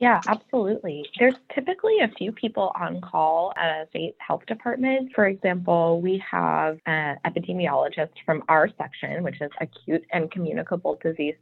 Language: English